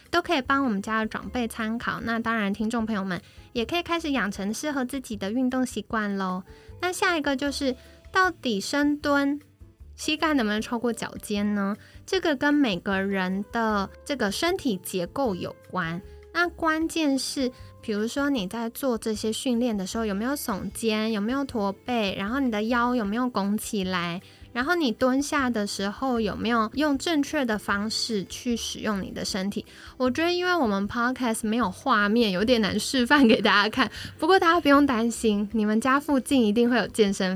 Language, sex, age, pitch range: Chinese, female, 10-29, 210-270 Hz